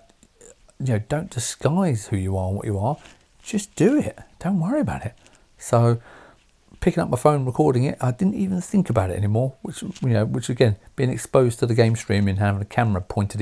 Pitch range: 100-140 Hz